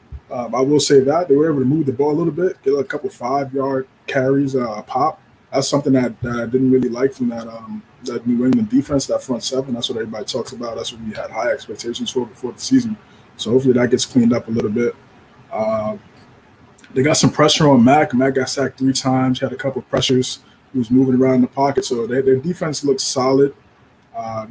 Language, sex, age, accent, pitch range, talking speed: English, male, 20-39, American, 125-145 Hz, 240 wpm